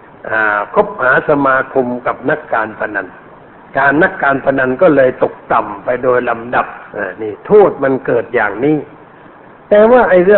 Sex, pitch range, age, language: male, 135-170 Hz, 60-79, Thai